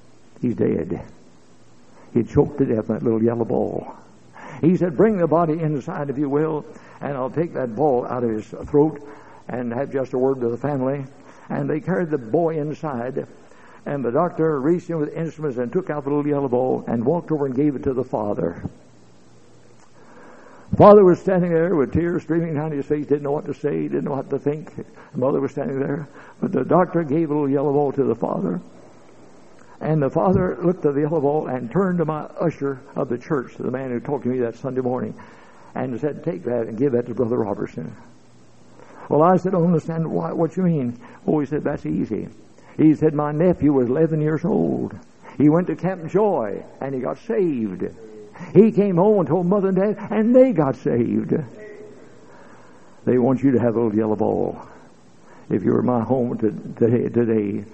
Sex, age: male, 60-79